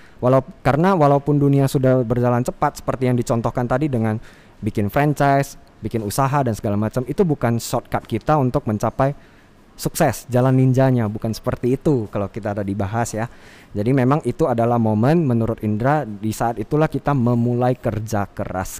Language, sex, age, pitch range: Indonesian, male, 20-39, 110-140 Hz